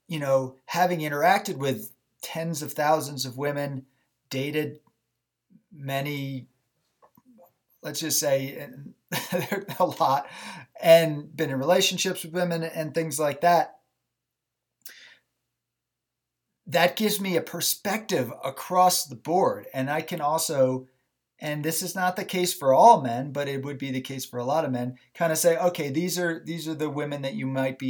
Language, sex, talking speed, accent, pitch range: English, male, 155 wpm, American, 130-170 Hz